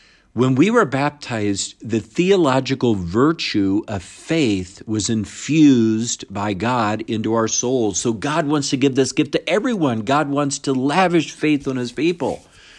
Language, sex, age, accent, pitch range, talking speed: English, male, 50-69, American, 105-150 Hz, 155 wpm